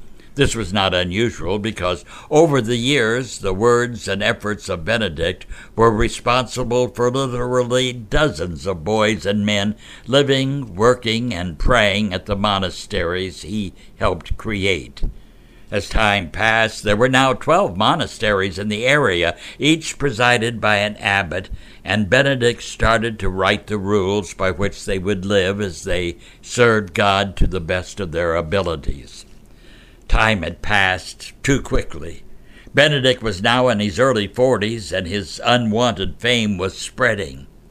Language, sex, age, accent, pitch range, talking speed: English, male, 60-79, American, 100-125 Hz, 140 wpm